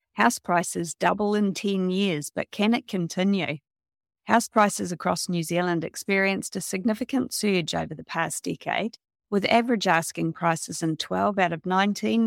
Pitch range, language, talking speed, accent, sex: 175-210 Hz, English, 155 wpm, Australian, female